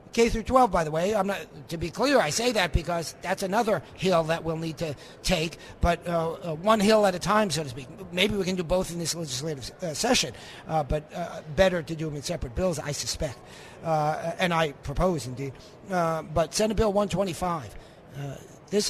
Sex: male